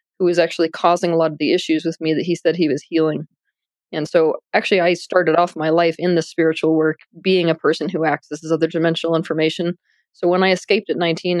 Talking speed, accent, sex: 220 wpm, American, female